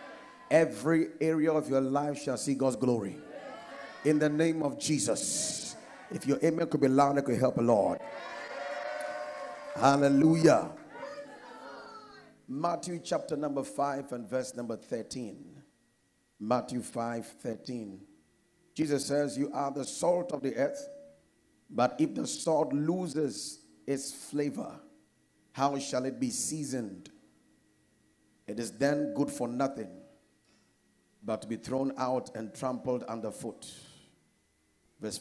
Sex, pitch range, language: male, 130-165 Hz, English